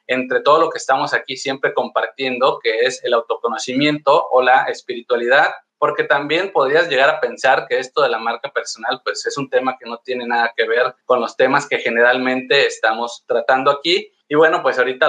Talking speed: 195 wpm